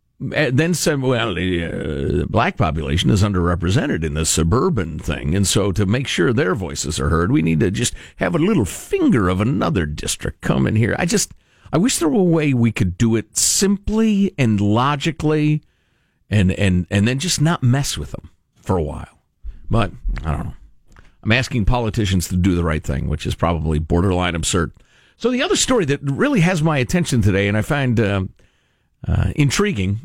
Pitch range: 90-140 Hz